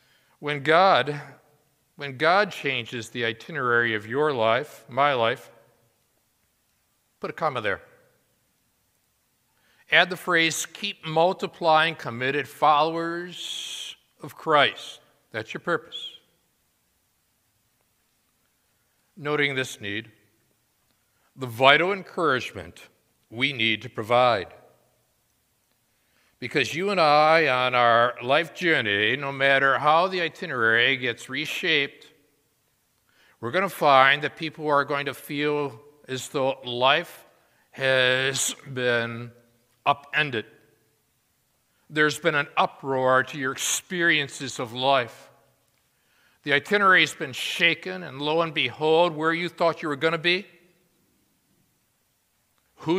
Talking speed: 110 wpm